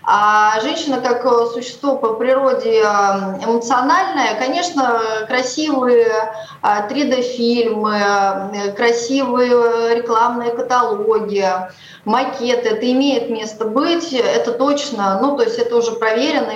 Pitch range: 220-265 Hz